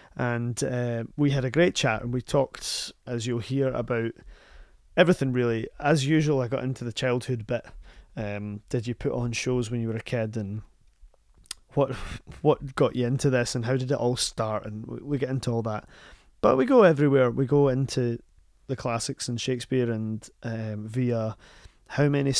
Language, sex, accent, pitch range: English, male, British, 115-135 Hz